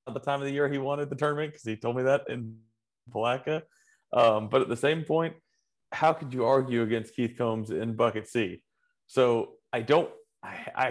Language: English